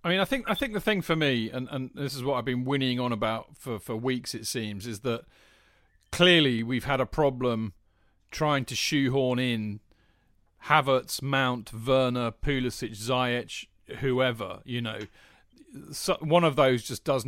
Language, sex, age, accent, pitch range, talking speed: English, male, 40-59, British, 115-140 Hz, 175 wpm